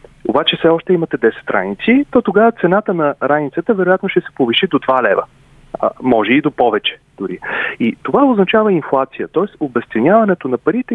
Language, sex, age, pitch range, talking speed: Bulgarian, male, 30-49, 155-215 Hz, 175 wpm